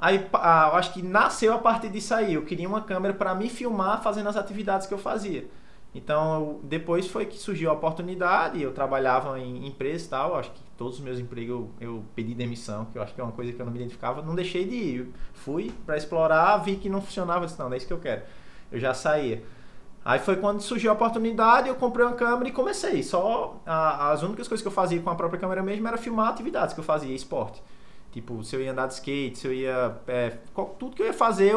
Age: 20-39